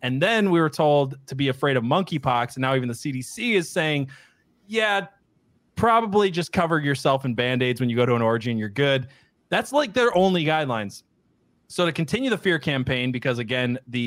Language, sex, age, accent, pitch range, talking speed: English, male, 20-39, American, 120-170 Hz, 205 wpm